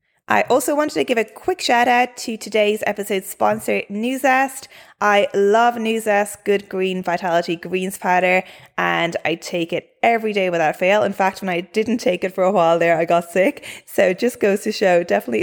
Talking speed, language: 205 wpm, English